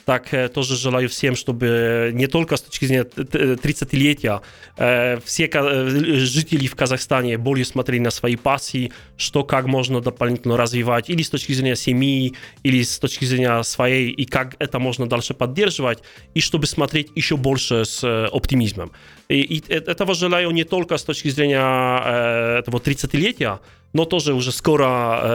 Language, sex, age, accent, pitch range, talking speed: Russian, male, 20-39, Polish, 120-140 Hz, 150 wpm